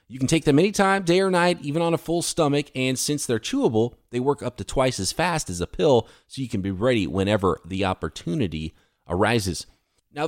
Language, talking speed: English, 215 wpm